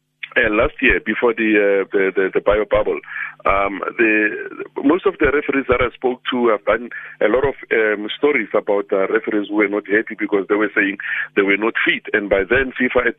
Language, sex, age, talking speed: English, male, 50-69, 220 wpm